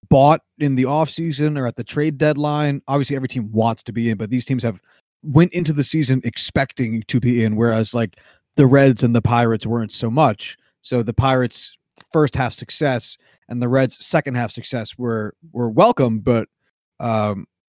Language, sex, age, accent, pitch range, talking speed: English, male, 30-49, American, 115-145 Hz, 185 wpm